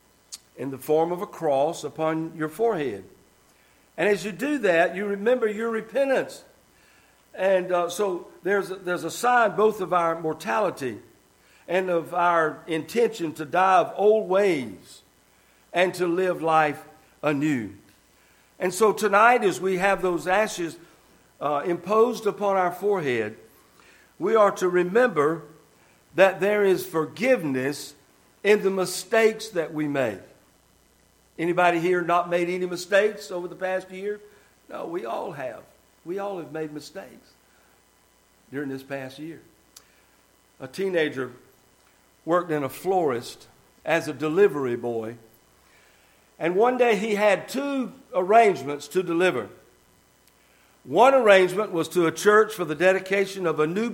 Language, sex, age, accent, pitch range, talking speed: English, male, 60-79, American, 160-205 Hz, 140 wpm